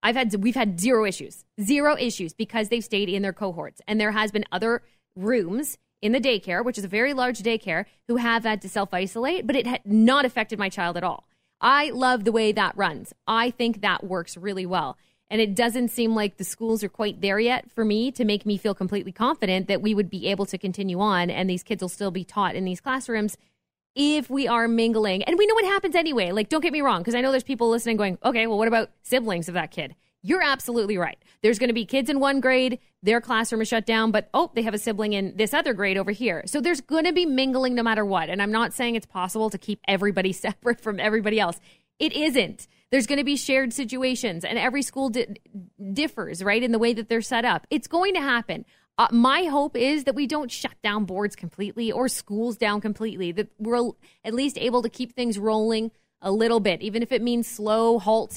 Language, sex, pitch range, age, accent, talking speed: English, female, 200-245 Hz, 20-39, American, 235 wpm